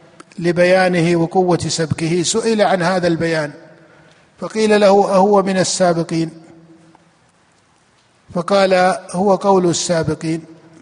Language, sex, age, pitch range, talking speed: Arabic, male, 50-69, 170-200 Hz, 90 wpm